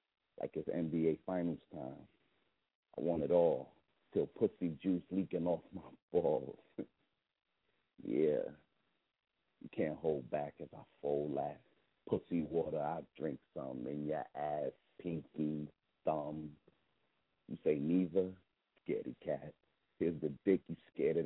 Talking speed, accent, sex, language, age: 130 wpm, American, male, English, 50-69